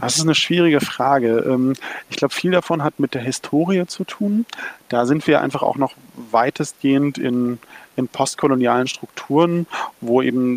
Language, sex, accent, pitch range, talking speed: German, male, German, 120-150 Hz, 160 wpm